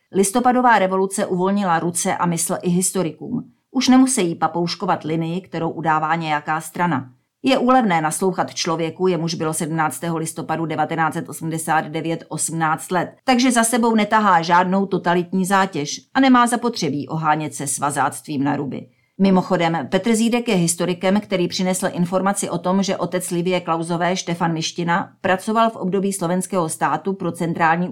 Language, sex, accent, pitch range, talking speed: Czech, female, native, 160-195 Hz, 140 wpm